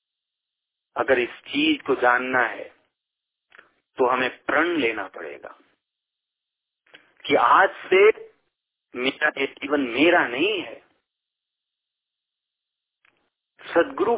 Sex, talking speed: male, 80 wpm